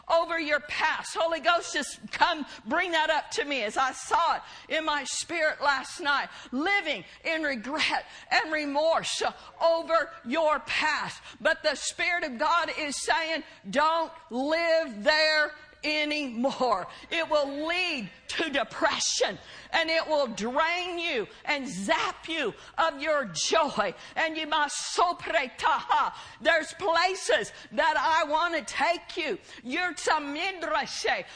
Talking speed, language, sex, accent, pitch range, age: 130 wpm, English, female, American, 295-335 Hz, 50-69